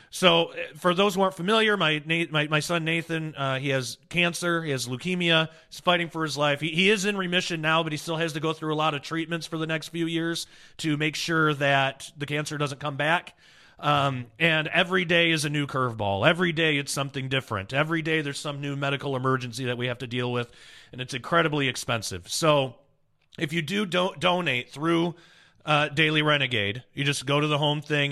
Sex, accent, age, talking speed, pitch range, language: male, American, 30-49, 215 wpm, 145-170 Hz, English